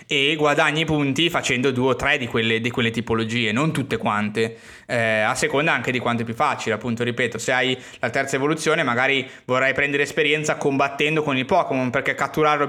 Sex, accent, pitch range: male, native, 115-150 Hz